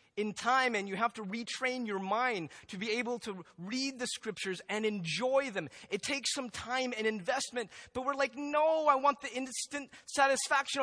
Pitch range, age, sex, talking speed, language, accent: 150-235 Hz, 30-49, male, 190 wpm, English, American